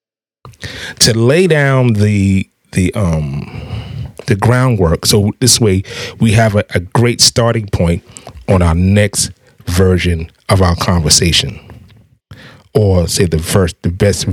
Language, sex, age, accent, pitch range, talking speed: English, male, 30-49, American, 100-130 Hz, 135 wpm